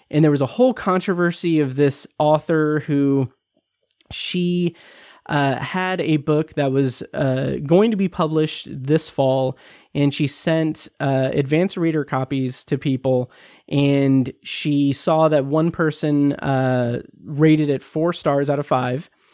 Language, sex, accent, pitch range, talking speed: English, male, American, 145-195 Hz, 145 wpm